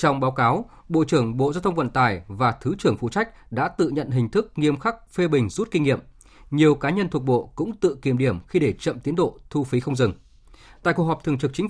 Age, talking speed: 20-39, 260 wpm